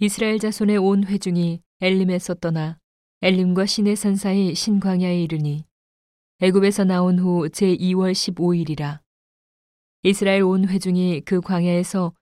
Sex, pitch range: female, 170-190 Hz